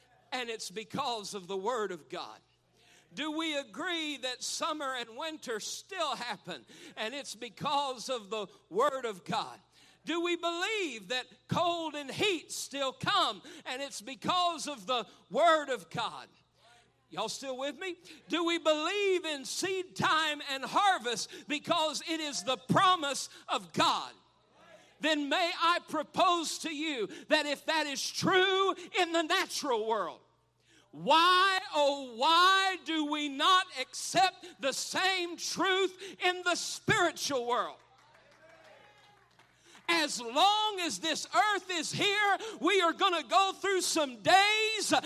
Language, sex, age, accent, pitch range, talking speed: English, male, 50-69, American, 290-355 Hz, 140 wpm